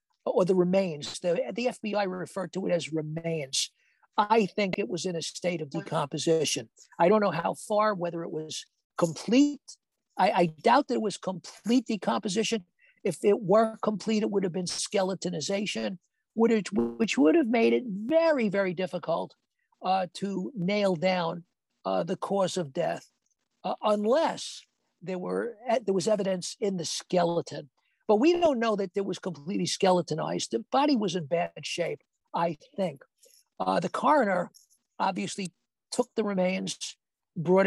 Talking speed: 155 wpm